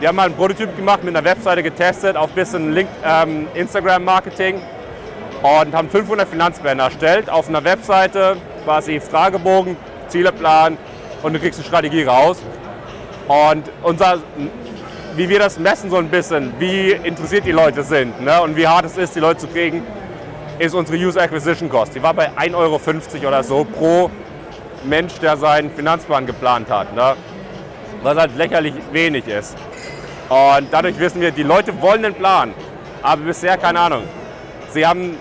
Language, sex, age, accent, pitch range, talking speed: German, male, 30-49, German, 155-190 Hz, 165 wpm